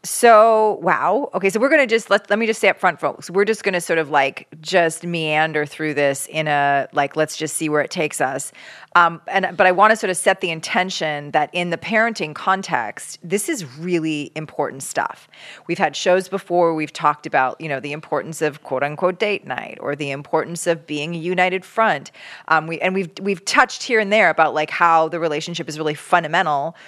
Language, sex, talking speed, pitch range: English, female, 215 wpm, 155-195 Hz